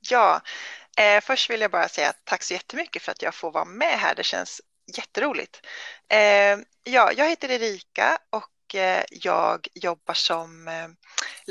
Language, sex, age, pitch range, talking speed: Swedish, female, 20-39, 180-255 Hz, 165 wpm